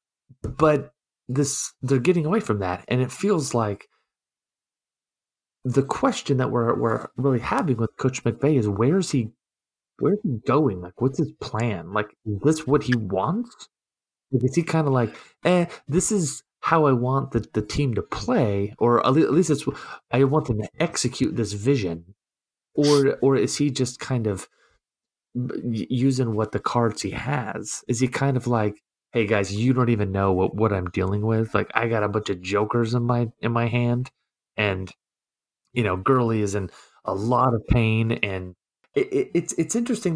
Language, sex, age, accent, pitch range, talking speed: English, male, 30-49, American, 110-145 Hz, 185 wpm